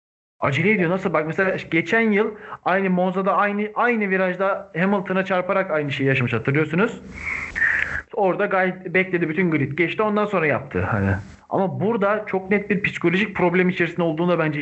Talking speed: 150 wpm